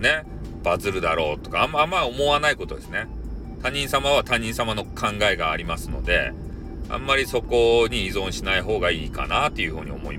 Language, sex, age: Japanese, male, 40-59